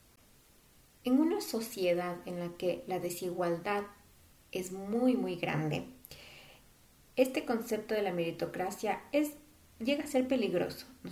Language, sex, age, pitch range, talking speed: Spanish, female, 30-49, 180-225 Hz, 120 wpm